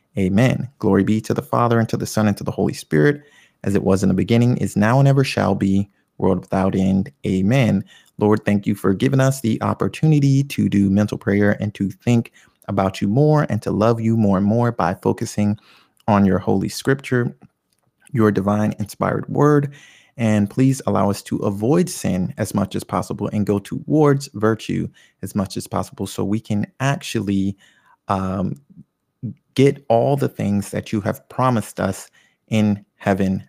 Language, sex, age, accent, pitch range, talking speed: English, male, 30-49, American, 100-115 Hz, 180 wpm